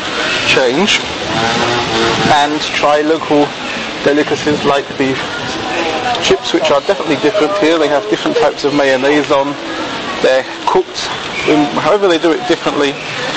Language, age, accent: English, 30-49, British